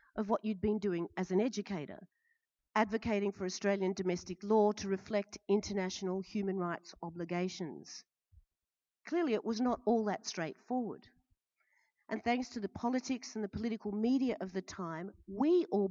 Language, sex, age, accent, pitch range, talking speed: English, female, 40-59, Australian, 205-285 Hz, 150 wpm